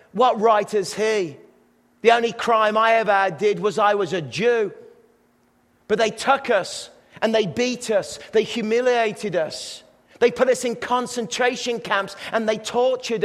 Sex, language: male, English